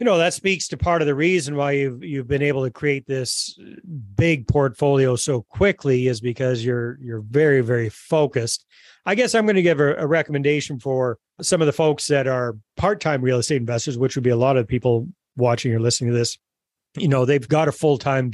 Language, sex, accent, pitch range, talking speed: English, male, American, 125-150 Hz, 215 wpm